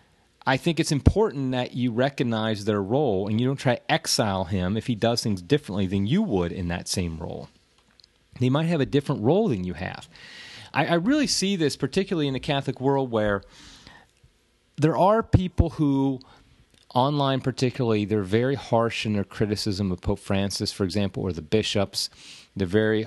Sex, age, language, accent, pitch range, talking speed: male, 30-49, English, American, 105-140 Hz, 180 wpm